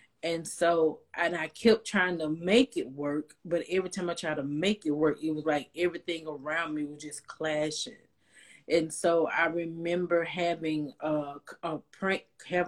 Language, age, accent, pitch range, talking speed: English, 30-49, American, 150-175 Hz, 160 wpm